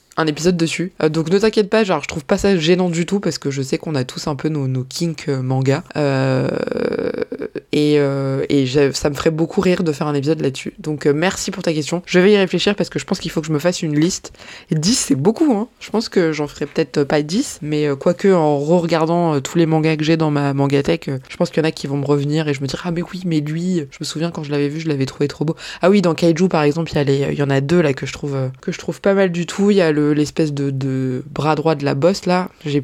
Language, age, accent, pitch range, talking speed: French, 20-39, French, 145-175 Hz, 300 wpm